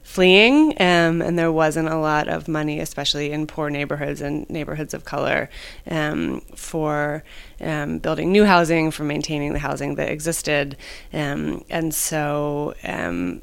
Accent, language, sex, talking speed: American, English, female, 145 wpm